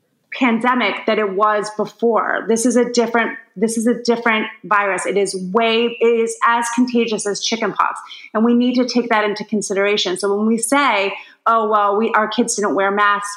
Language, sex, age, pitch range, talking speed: English, female, 30-49, 200-235 Hz, 195 wpm